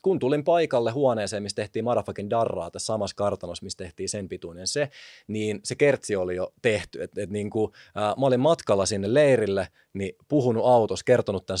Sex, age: male, 30-49